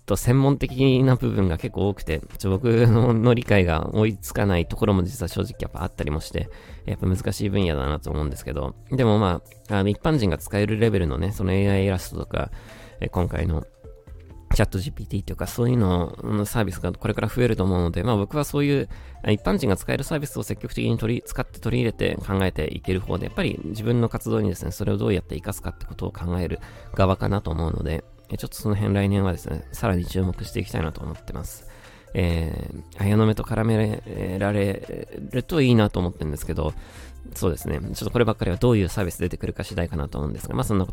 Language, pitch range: Japanese, 90-115 Hz